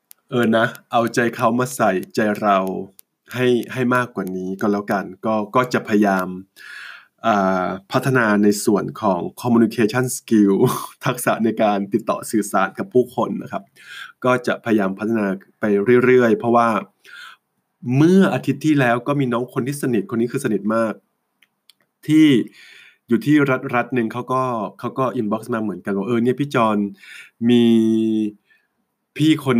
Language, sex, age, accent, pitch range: English, male, 20-39, Danish, 105-125 Hz